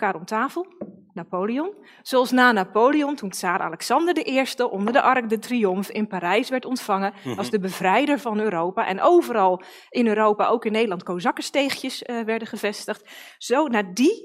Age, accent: 20-39, Dutch